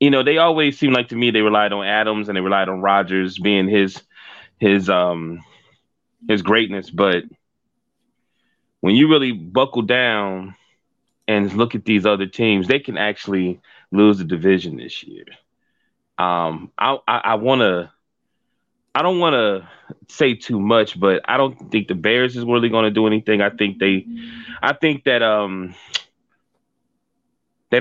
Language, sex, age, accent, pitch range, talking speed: English, male, 20-39, American, 100-135 Hz, 165 wpm